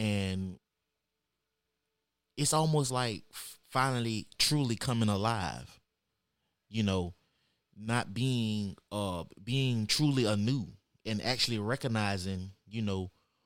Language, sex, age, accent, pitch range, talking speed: English, male, 20-39, American, 95-120 Hz, 95 wpm